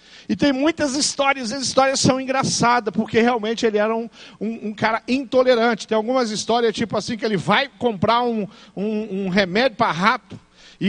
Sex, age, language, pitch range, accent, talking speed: male, 50-69, Portuguese, 190-245 Hz, Brazilian, 180 wpm